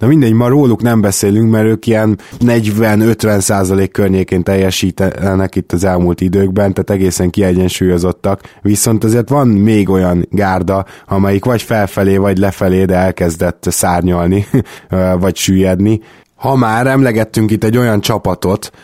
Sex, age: male, 20-39